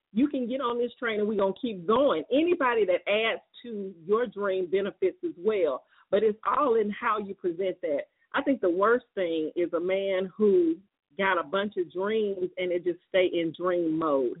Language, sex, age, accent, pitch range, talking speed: English, female, 40-59, American, 185-255 Hz, 210 wpm